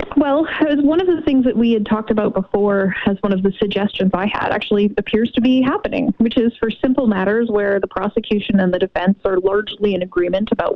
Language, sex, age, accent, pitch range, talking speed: English, female, 20-39, American, 195-235 Hz, 225 wpm